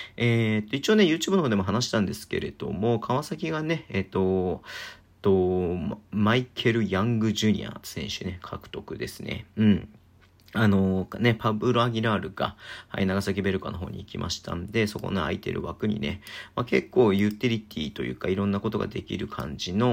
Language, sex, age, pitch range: Japanese, male, 40-59, 95-115 Hz